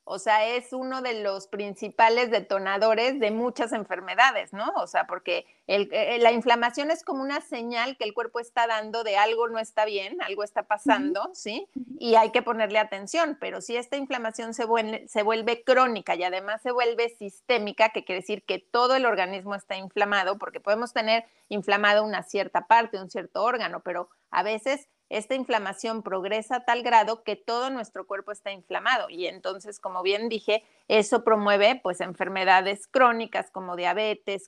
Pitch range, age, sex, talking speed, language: 195-235 Hz, 30-49, female, 170 wpm, Spanish